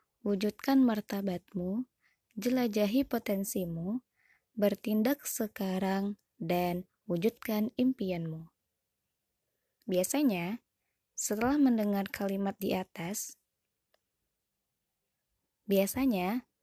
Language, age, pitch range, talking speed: Indonesian, 20-39, 195-250 Hz, 60 wpm